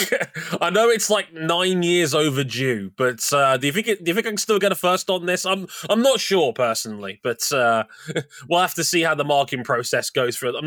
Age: 20-39